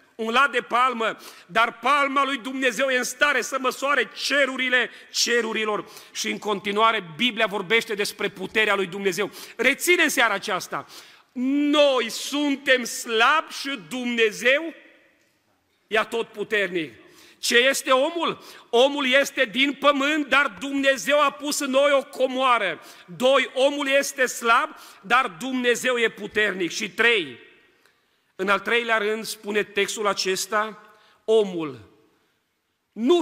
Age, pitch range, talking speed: 40-59, 210-275 Hz, 120 wpm